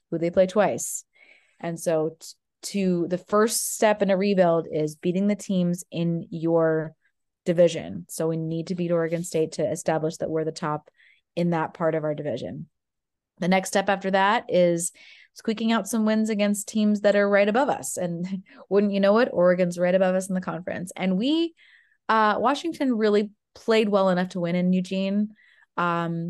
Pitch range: 170-200 Hz